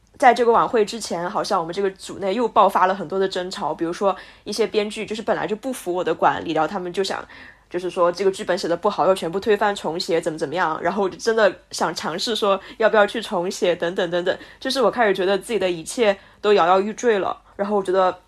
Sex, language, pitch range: female, Chinese, 185-230 Hz